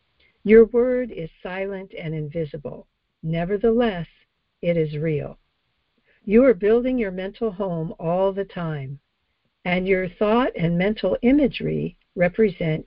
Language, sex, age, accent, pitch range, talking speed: English, female, 60-79, American, 165-220 Hz, 120 wpm